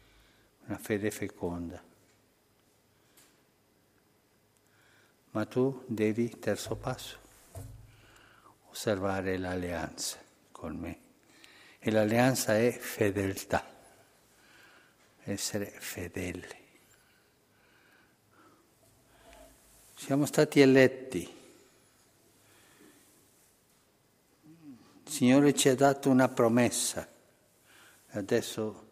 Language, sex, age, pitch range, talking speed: Italian, male, 60-79, 95-115 Hz, 60 wpm